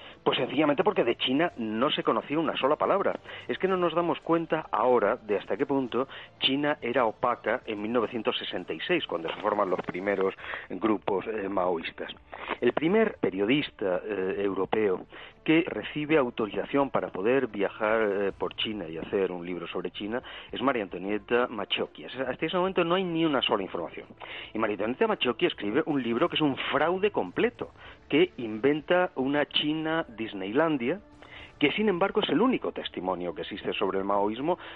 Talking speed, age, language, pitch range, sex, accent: 165 wpm, 40-59, Spanish, 105-165 Hz, male, Spanish